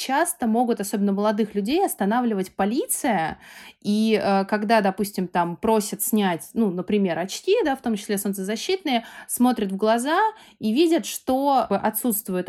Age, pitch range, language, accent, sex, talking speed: 20-39, 195-245 Hz, Russian, native, female, 130 wpm